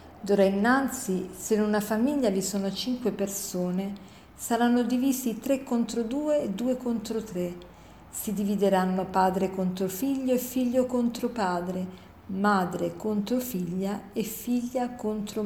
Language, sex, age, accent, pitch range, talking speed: Italian, female, 50-69, native, 185-245 Hz, 130 wpm